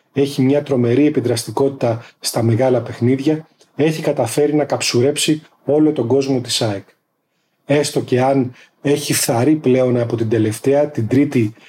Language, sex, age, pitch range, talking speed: Greek, male, 30-49, 120-145 Hz, 140 wpm